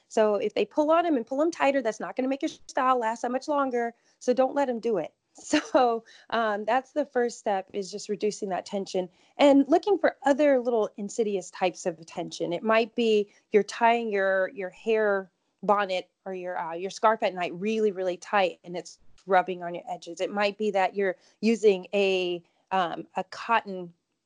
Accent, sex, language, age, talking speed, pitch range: American, female, English, 30-49, 205 wpm, 185-230 Hz